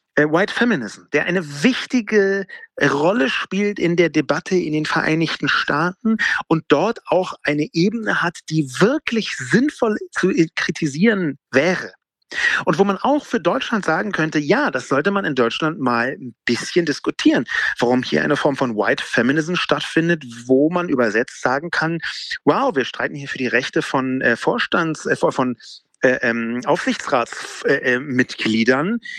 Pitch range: 135-205 Hz